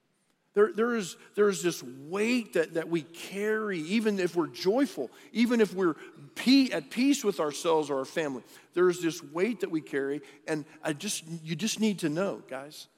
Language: English